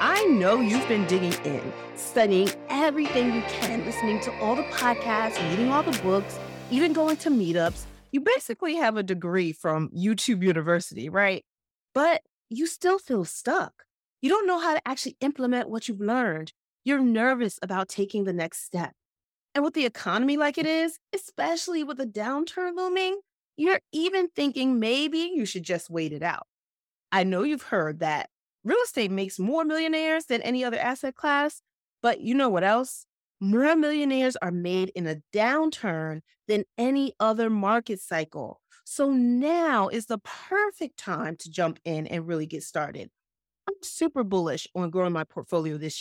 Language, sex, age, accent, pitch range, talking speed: English, female, 30-49, American, 190-300 Hz, 170 wpm